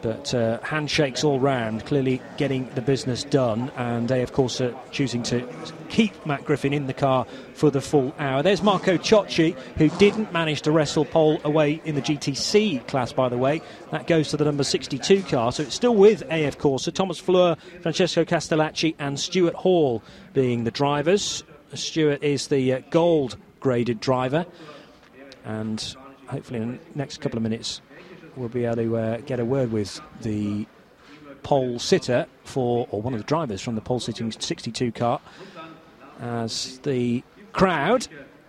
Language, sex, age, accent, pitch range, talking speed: English, male, 30-49, British, 130-165 Hz, 170 wpm